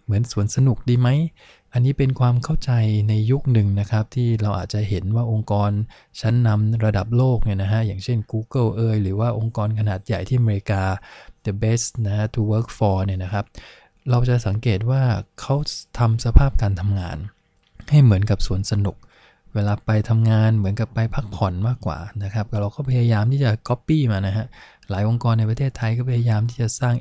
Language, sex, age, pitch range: English, male, 20-39, 105-120 Hz